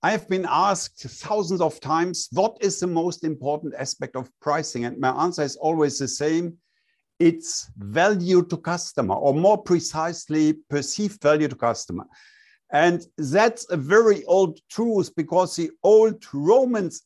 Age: 50-69